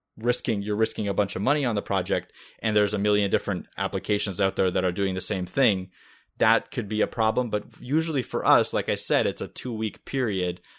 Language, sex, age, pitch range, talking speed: English, male, 20-39, 90-110 Hz, 225 wpm